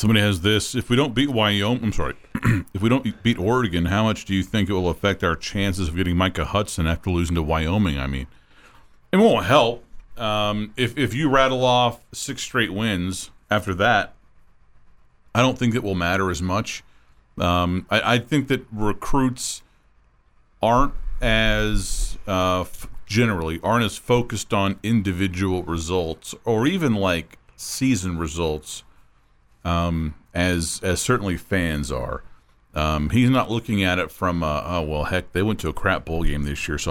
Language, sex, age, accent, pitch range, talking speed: English, male, 40-59, American, 85-110 Hz, 170 wpm